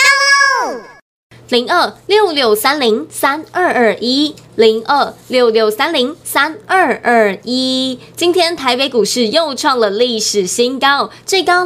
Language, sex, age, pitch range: Chinese, female, 20-39, 225-315 Hz